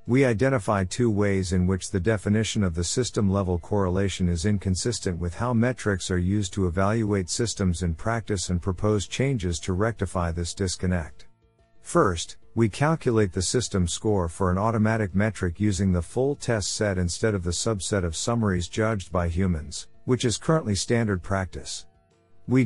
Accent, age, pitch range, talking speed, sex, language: American, 50-69, 90-115 Hz, 165 wpm, male, English